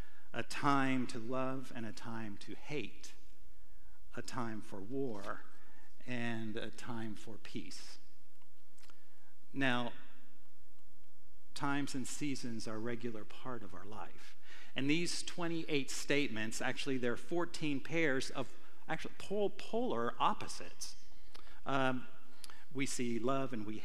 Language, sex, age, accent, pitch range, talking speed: English, male, 50-69, American, 120-150 Hz, 120 wpm